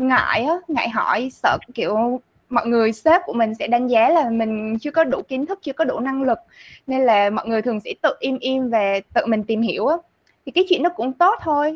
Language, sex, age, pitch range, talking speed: Vietnamese, female, 20-39, 225-305 Hz, 235 wpm